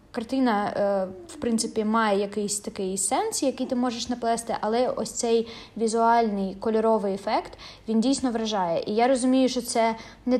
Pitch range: 205-230 Hz